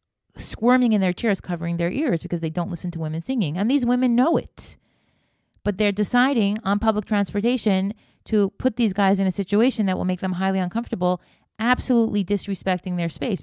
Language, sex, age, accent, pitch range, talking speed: English, female, 30-49, American, 195-245 Hz, 190 wpm